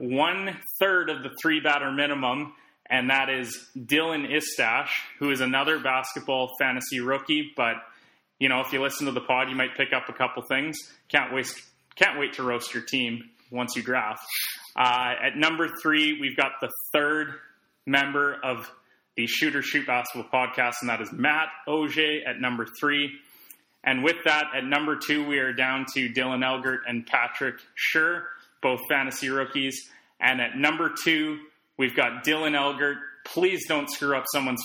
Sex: male